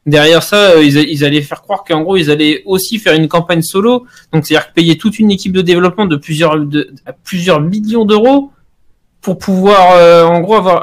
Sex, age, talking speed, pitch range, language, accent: male, 20-39, 215 wpm, 145-185 Hz, French, French